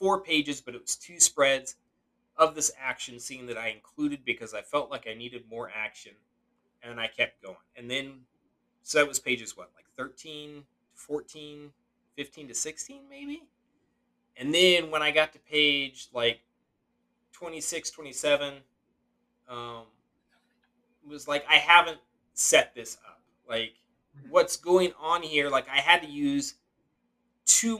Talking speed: 150 wpm